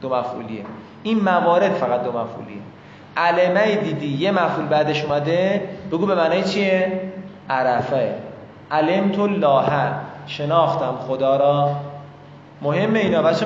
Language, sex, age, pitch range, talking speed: Persian, male, 20-39, 150-195 Hz, 120 wpm